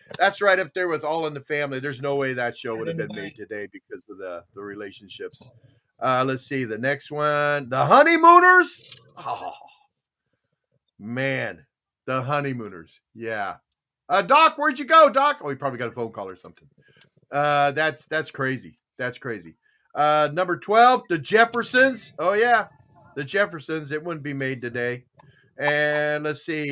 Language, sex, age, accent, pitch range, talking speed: English, male, 40-59, American, 130-175 Hz, 170 wpm